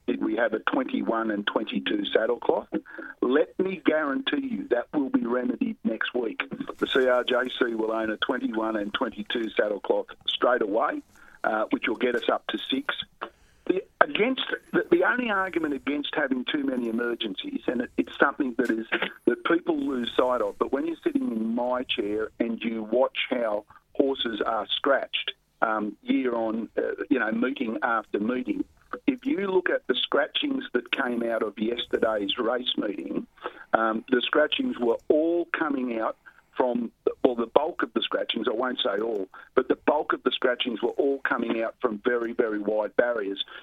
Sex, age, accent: male, 50-69, Australian